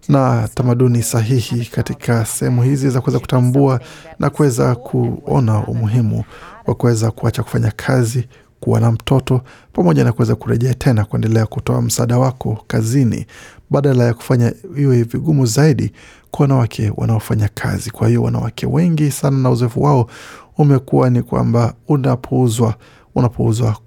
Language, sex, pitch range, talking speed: Swahili, male, 115-130 Hz, 135 wpm